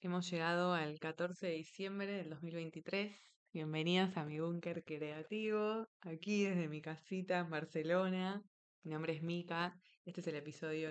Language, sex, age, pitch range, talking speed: Spanish, female, 20-39, 150-175 Hz, 150 wpm